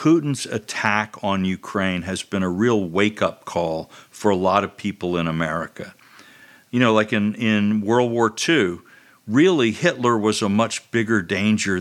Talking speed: 165 wpm